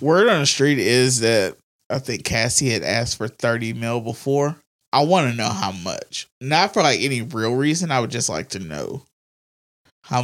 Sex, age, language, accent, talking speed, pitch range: male, 20-39, English, American, 200 wpm, 115-140 Hz